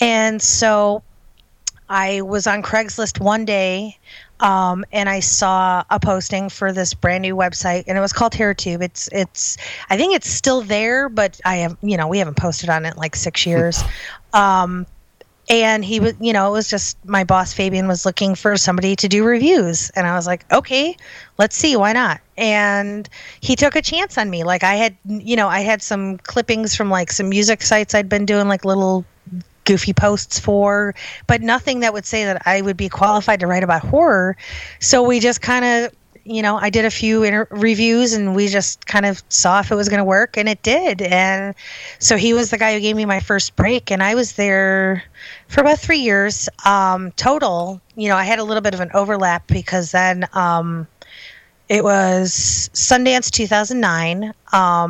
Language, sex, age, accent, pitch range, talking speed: English, female, 30-49, American, 185-220 Hz, 200 wpm